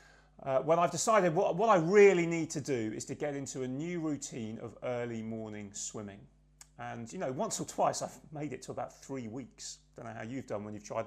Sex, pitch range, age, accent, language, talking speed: male, 135-190 Hz, 30-49, British, English, 235 wpm